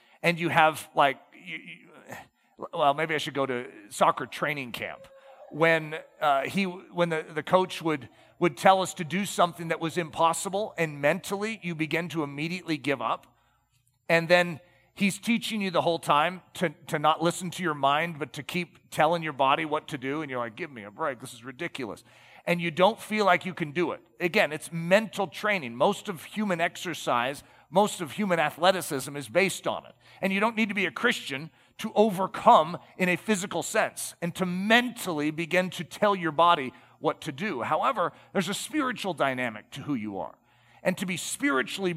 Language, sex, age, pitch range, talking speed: English, male, 40-59, 155-200 Hz, 195 wpm